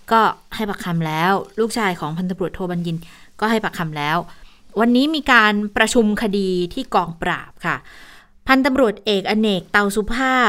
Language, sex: Thai, female